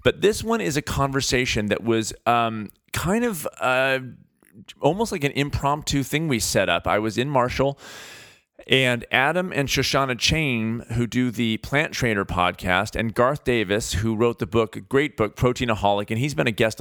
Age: 40-59